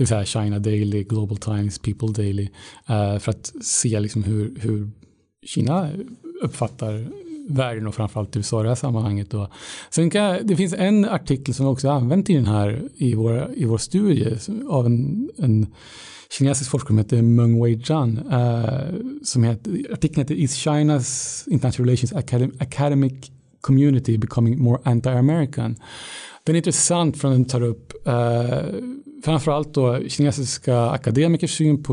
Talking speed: 155 wpm